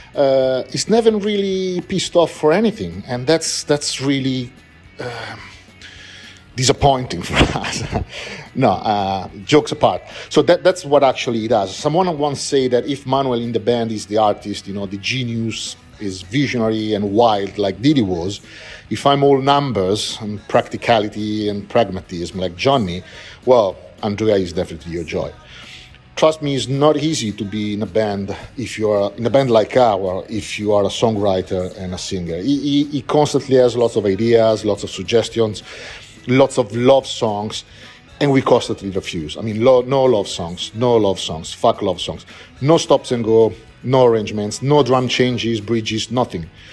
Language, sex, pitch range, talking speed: English, male, 100-135 Hz, 170 wpm